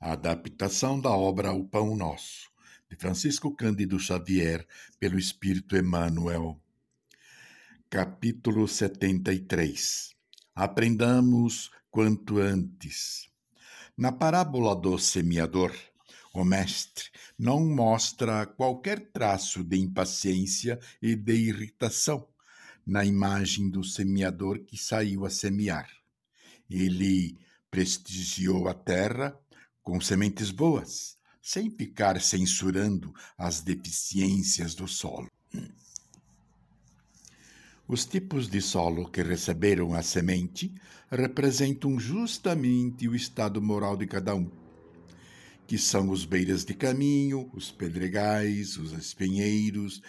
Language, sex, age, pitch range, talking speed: Portuguese, male, 60-79, 95-120 Hz, 100 wpm